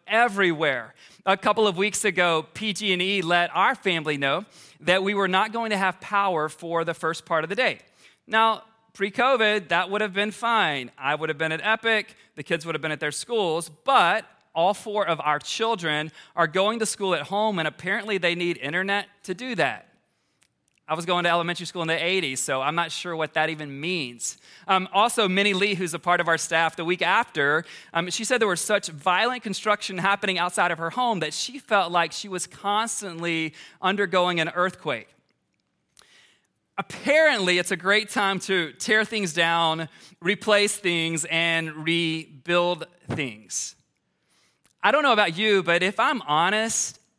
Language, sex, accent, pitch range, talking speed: English, male, American, 165-210 Hz, 180 wpm